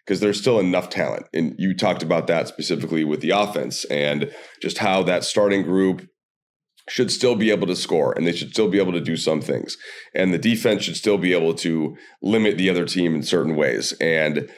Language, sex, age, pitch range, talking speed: English, male, 30-49, 85-100 Hz, 215 wpm